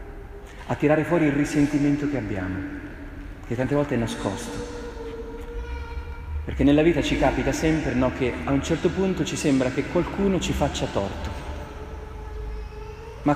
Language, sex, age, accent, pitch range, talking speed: Italian, male, 30-49, native, 110-150 Hz, 145 wpm